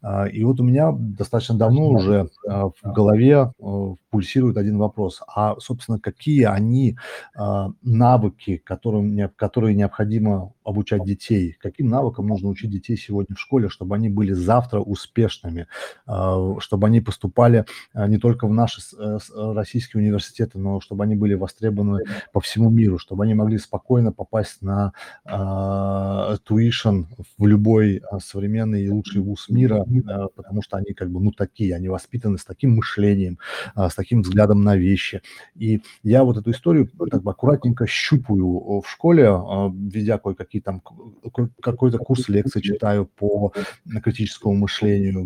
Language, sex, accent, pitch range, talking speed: Russian, male, native, 100-115 Hz, 135 wpm